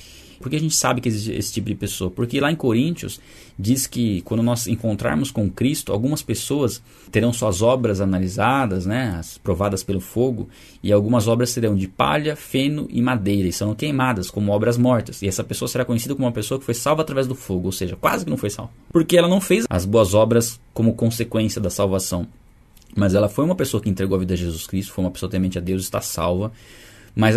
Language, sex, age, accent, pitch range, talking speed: Portuguese, male, 20-39, Brazilian, 95-120 Hz, 225 wpm